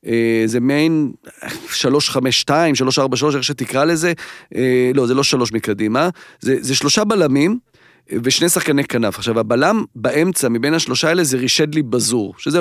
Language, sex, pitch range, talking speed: Hebrew, male, 130-170 Hz, 155 wpm